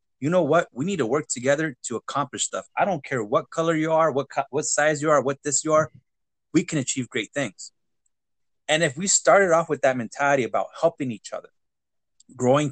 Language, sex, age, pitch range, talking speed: English, male, 30-49, 130-165 Hz, 215 wpm